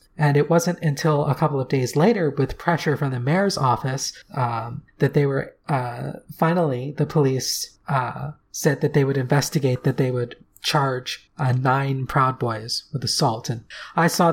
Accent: American